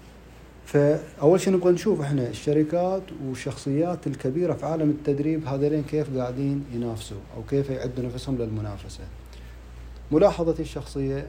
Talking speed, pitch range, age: 115 wpm, 115-150 Hz, 30-49